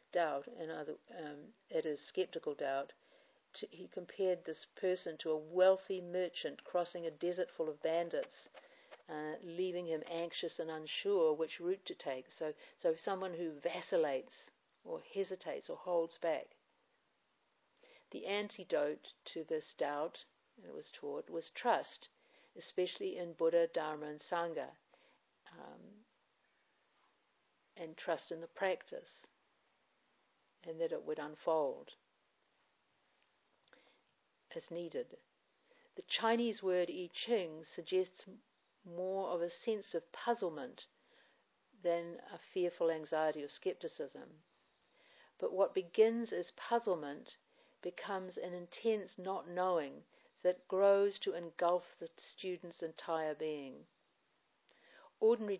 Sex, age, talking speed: female, 50-69, 115 wpm